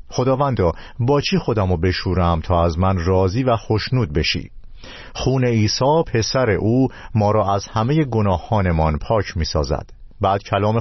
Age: 50-69